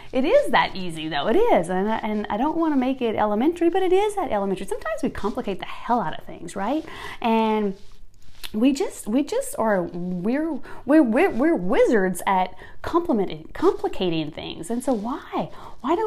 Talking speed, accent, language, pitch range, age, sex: 190 wpm, American, English, 180-260 Hz, 30-49, female